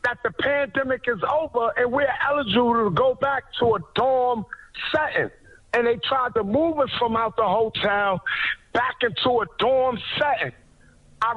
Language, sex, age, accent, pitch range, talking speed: English, male, 50-69, American, 230-275 Hz, 165 wpm